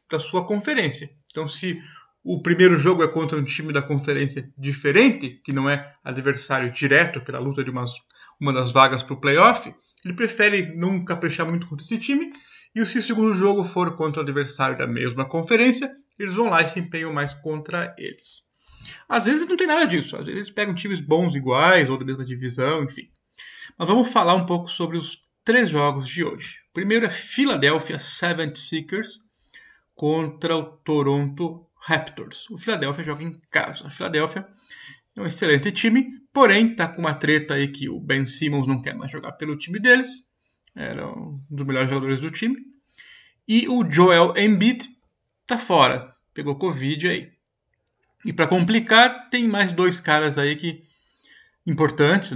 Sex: male